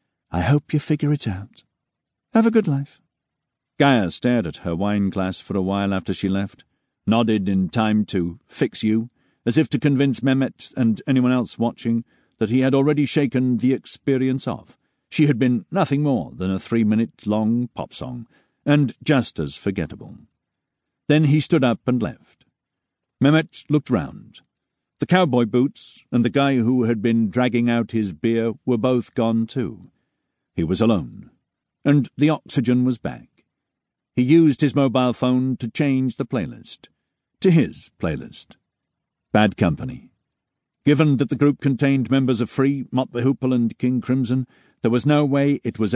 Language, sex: English, male